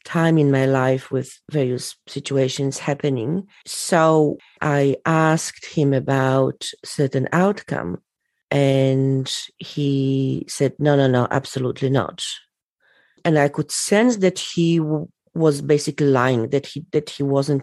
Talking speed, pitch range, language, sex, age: 130 wpm, 140-165 Hz, English, female, 40-59